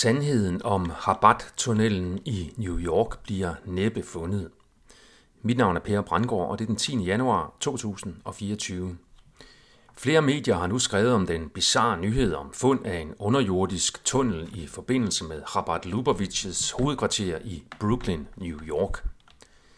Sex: male